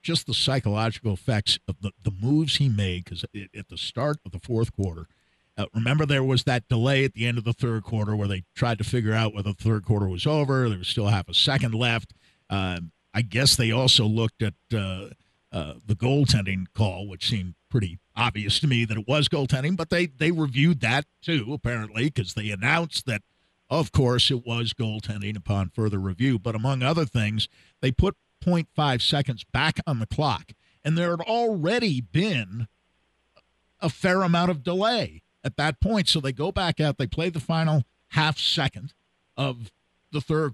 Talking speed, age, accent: 190 wpm, 50-69, American